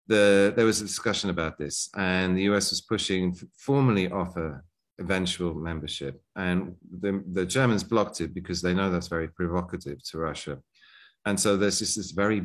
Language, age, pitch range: English, 40-59, 85-100 Hz